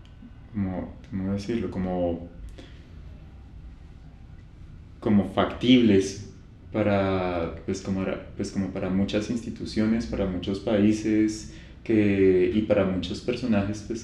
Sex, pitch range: male, 85-100 Hz